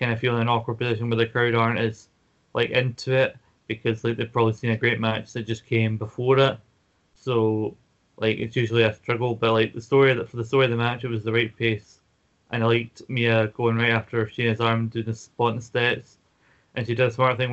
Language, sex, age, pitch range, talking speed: English, male, 20-39, 115-120 Hz, 240 wpm